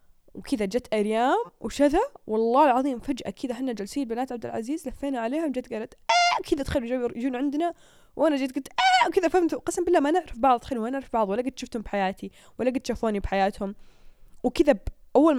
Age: 10-29